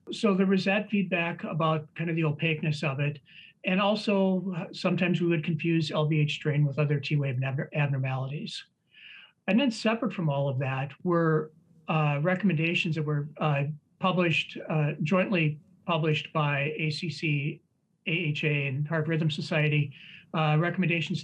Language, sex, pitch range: English, male, 150-175 Hz